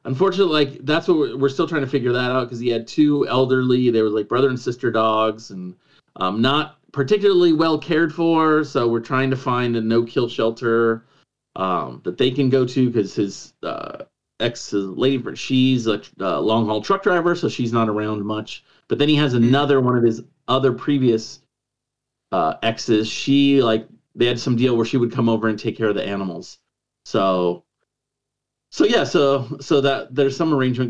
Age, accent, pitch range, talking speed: 30-49, American, 110-140 Hz, 190 wpm